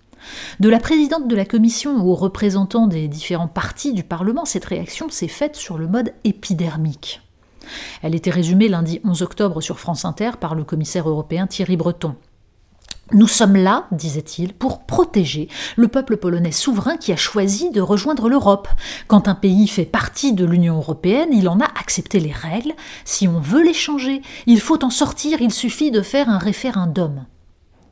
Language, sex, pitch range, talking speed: French, female, 170-230 Hz, 175 wpm